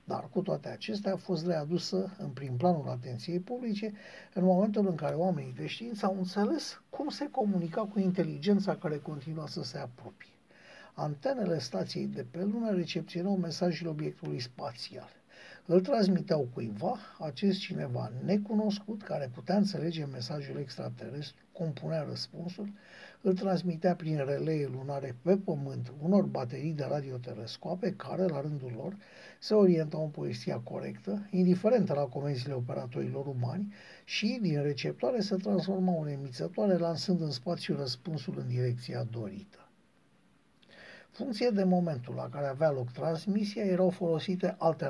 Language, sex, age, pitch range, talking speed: Romanian, male, 60-79, 145-195 Hz, 140 wpm